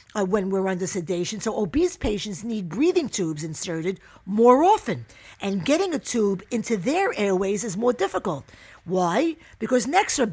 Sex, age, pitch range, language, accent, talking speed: female, 50-69, 185-250 Hz, English, American, 165 wpm